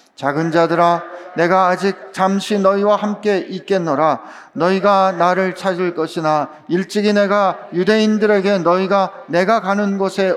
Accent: native